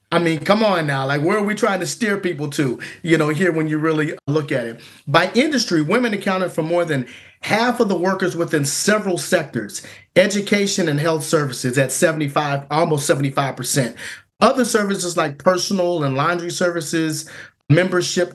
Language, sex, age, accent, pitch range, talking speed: English, male, 40-59, American, 155-195 Hz, 175 wpm